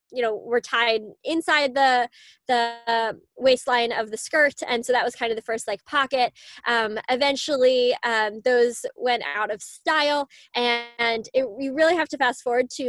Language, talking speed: English, 175 wpm